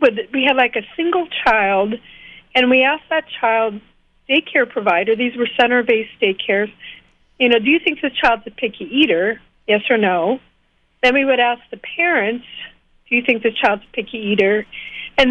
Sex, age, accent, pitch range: female, 50-69, American, 220-265 Hz